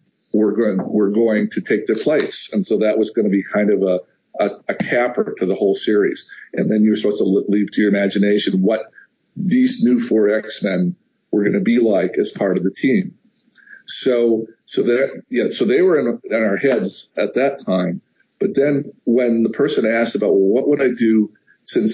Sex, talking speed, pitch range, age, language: male, 210 wpm, 100-130 Hz, 50-69, English